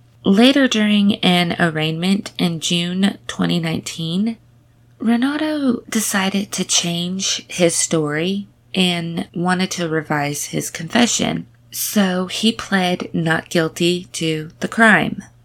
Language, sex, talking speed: English, female, 105 wpm